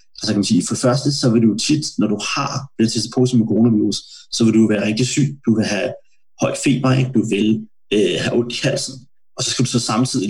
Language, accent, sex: Danish, native, male